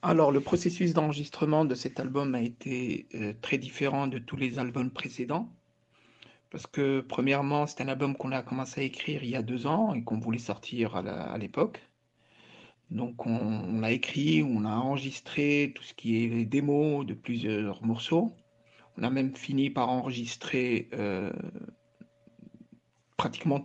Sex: male